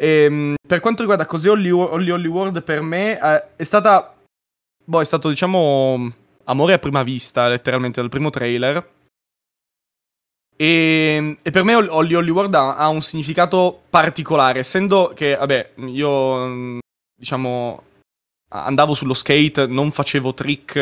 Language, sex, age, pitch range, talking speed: Italian, male, 20-39, 130-165 Hz, 130 wpm